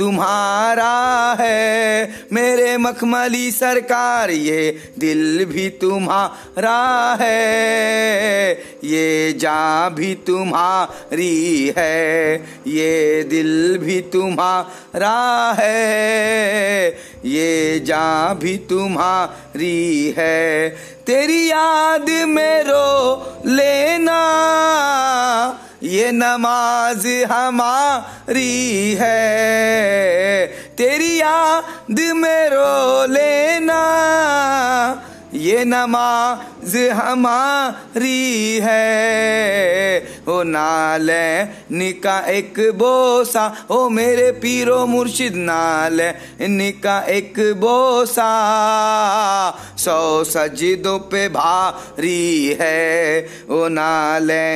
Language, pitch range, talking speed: Hindi, 180-255 Hz, 65 wpm